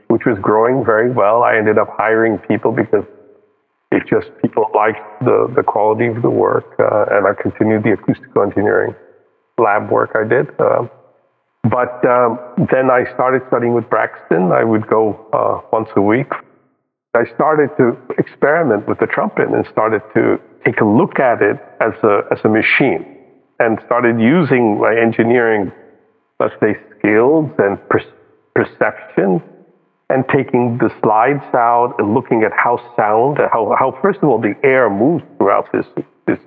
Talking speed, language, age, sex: 160 wpm, English, 50-69, male